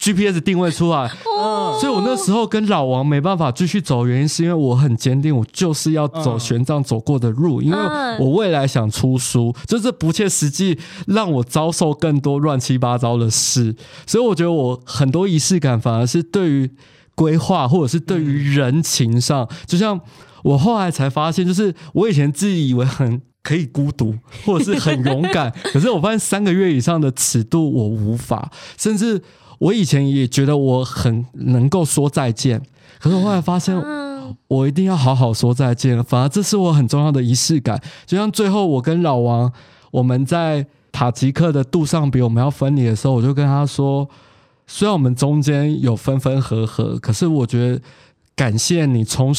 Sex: male